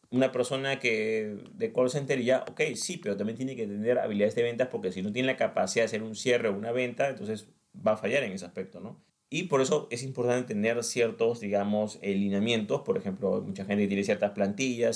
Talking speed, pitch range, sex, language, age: 215 wpm, 105-125 Hz, male, Spanish, 30-49